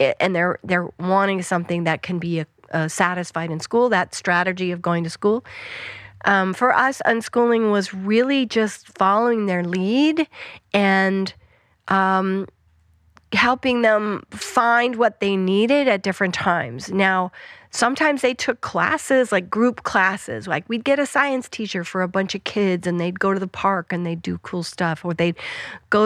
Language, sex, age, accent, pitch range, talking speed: Russian, female, 40-59, American, 180-235 Hz, 170 wpm